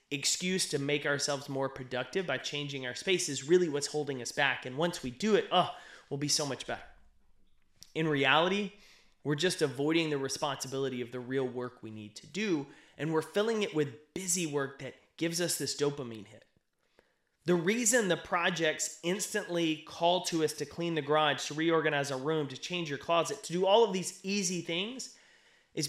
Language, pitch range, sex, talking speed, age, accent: English, 135-180 Hz, male, 190 wpm, 30-49, American